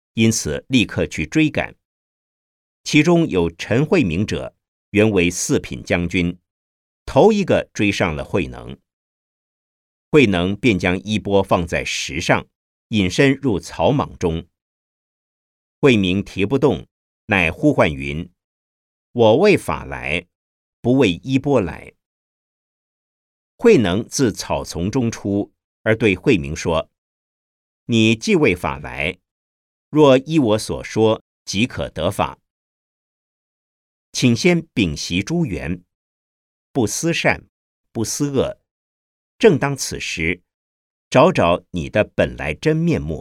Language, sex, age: Chinese, male, 50-69